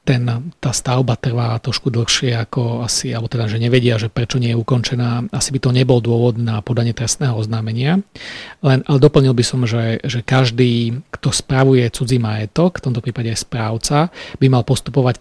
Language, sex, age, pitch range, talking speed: Slovak, male, 40-59, 115-130 Hz, 180 wpm